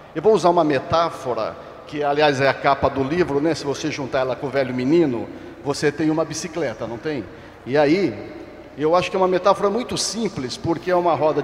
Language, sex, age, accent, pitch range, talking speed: Portuguese, male, 50-69, Brazilian, 140-190 Hz, 215 wpm